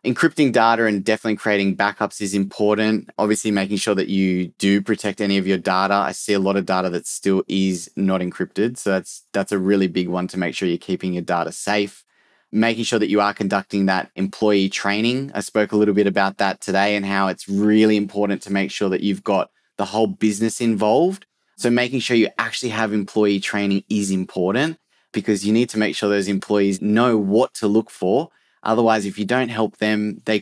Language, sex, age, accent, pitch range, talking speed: English, male, 20-39, Australian, 100-110 Hz, 210 wpm